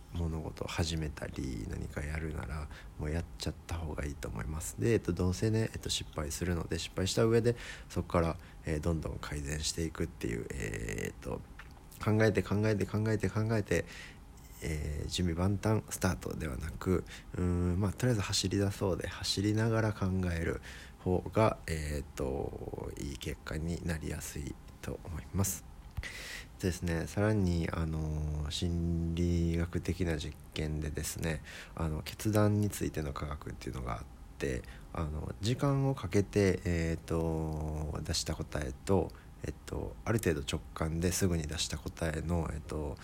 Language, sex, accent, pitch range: Japanese, male, native, 75-95 Hz